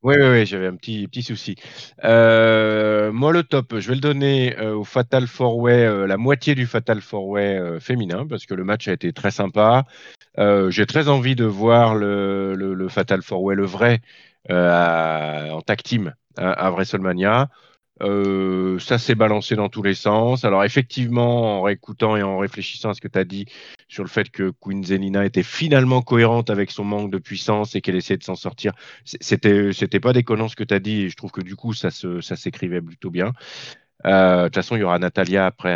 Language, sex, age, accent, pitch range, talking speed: French, male, 40-59, French, 95-120 Hz, 215 wpm